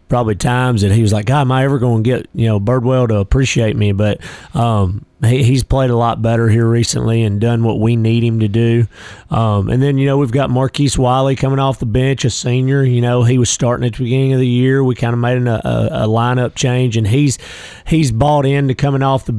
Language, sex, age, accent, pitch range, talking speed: English, male, 30-49, American, 115-130 Hz, 250 wpm